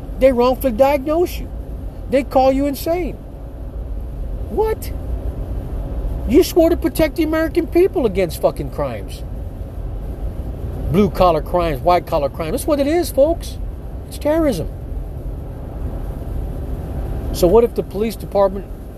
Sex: male